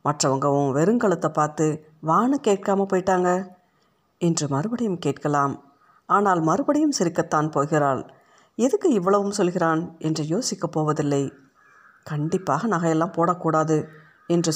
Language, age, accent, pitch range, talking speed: Tamil, 50-69, native, 150-190 Hz, 95 wpm